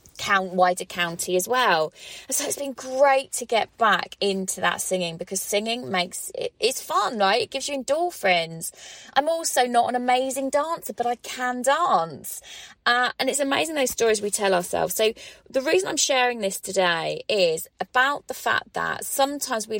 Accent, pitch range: British, 180-265 Hz